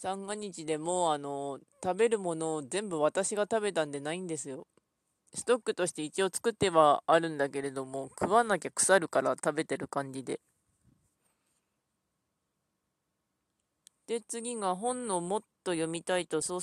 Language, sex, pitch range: Japanese, female, 160-245 Hz